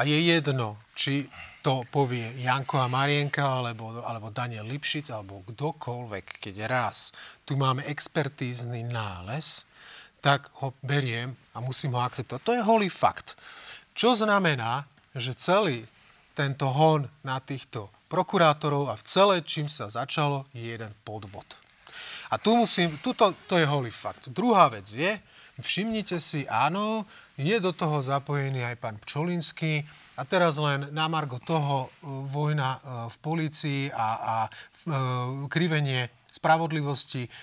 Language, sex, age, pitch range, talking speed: Slovak, male, 30-49, 125-160 Hz, 135 wpm